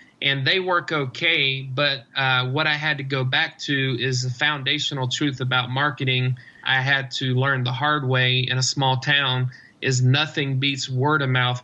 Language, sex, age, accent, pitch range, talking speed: English, male, 40-59, American, 130-140 Hz, 185 wpm